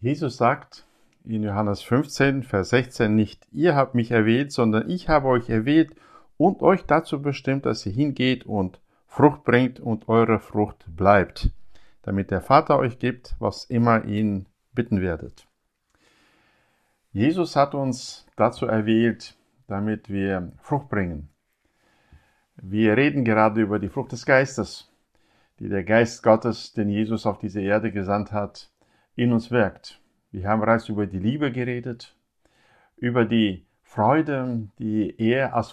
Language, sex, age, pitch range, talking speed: German, male, 50-69, 105-130 Hz, 145 wpm